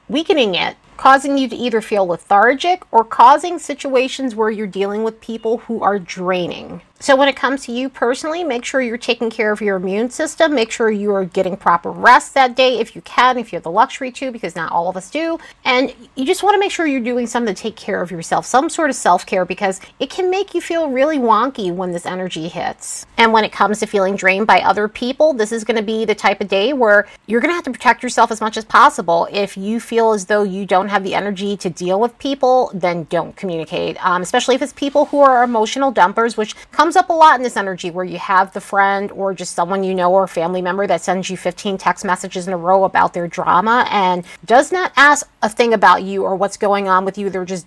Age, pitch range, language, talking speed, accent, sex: 30-49, 190-260 Hz, English, 250 wpm, American, female